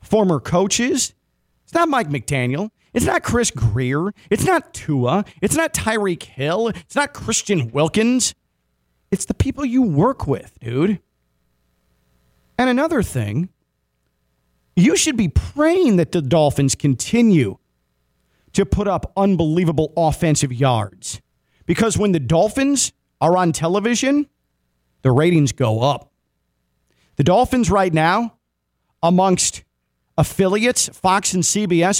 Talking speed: 120 wpm